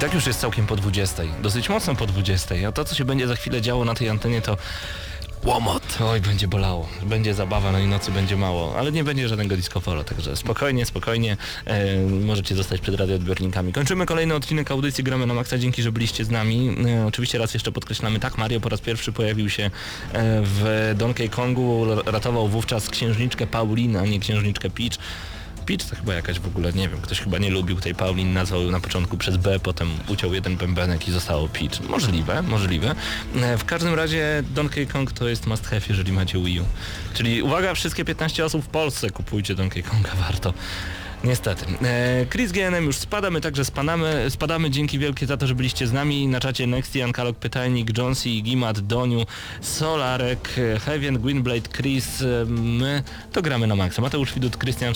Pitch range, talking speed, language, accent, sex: 95-125 Hz, 185 wpm, Polish, native, male